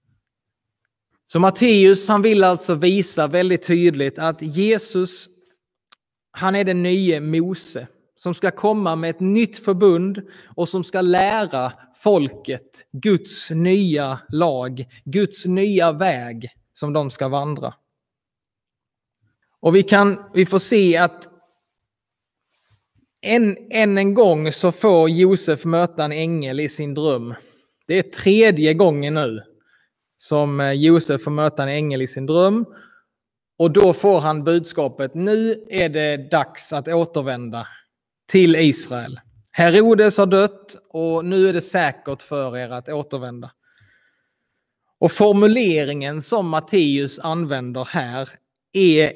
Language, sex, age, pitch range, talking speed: Swedish, male, 20-39, 140-190 Hz, 125 wpm